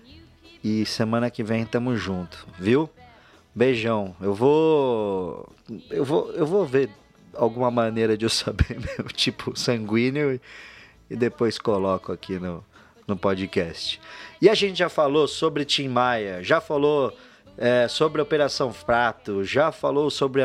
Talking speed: 145 wpm